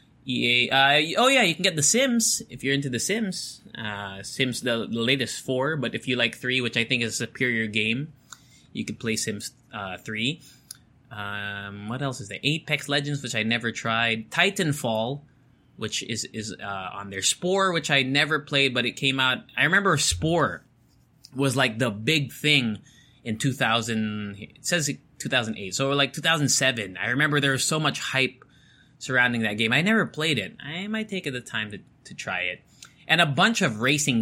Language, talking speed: English, 190 wpm